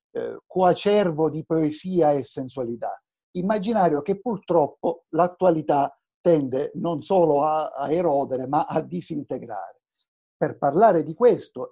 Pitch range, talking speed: 140-195 Hz, 115 wpm